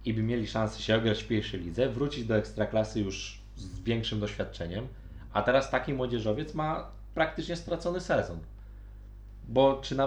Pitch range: 100-135 Hz